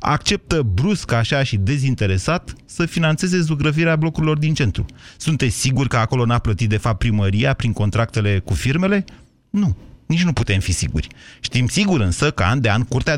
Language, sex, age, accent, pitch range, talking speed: Romanian, male, 30-49, native, 110-150 Hz, 175 wpm